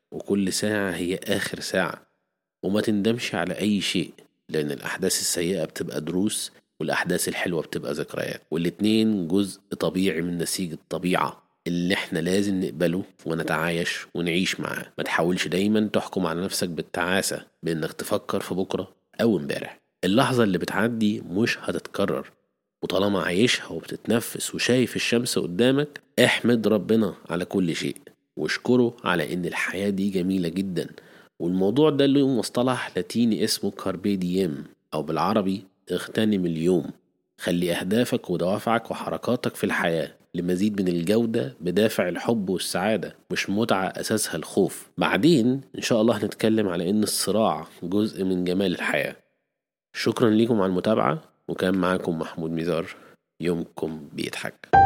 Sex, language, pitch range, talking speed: male, Arabic, 90-110 Hz, 130 wpm